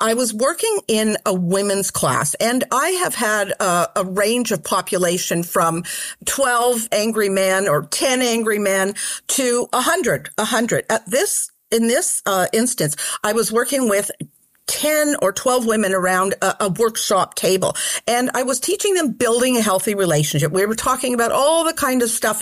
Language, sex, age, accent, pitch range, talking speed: English, female, 50-69, American, 190-260 Hz, 175 wpm